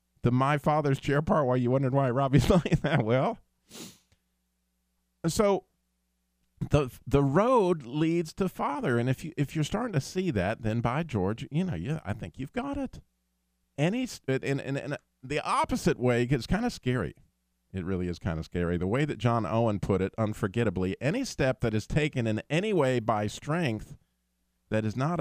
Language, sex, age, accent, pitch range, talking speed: English, male, 40-59, American, 90-140 Hz, 185 wpm